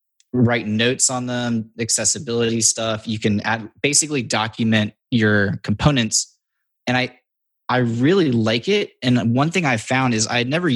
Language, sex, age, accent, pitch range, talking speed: English, male, 20-39, American, 105-120 Hz, 155 wpm